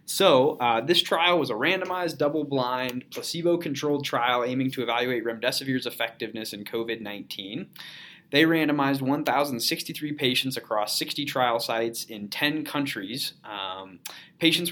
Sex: male